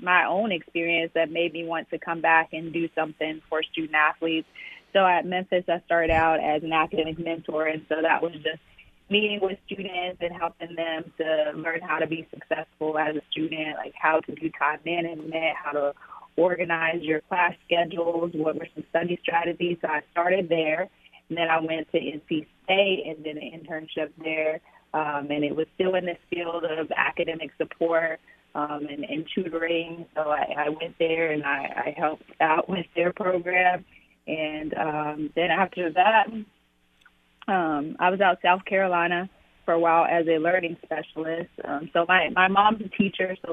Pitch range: 155-175 Hz